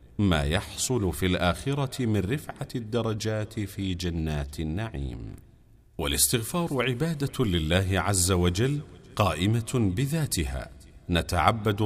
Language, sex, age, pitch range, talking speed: Arabic, male, 40-59, 80-120 Hz, 90 wpm